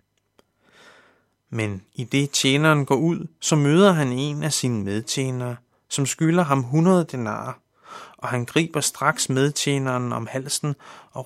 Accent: native